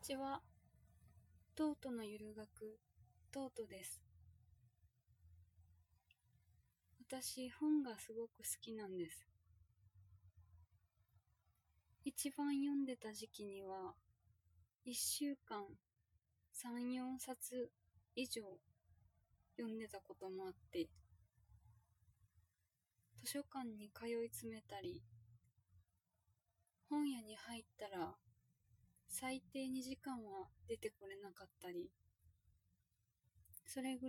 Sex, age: female, 20-39